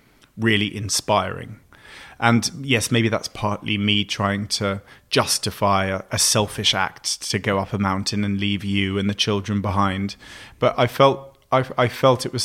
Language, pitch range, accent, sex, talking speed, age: English, 100-115 Hz, British, male, 170 wpm, 30-49